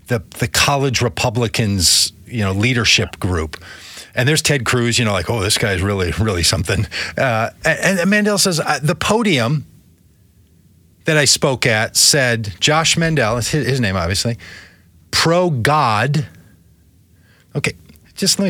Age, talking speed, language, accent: 40-59, 145 wpm, English, American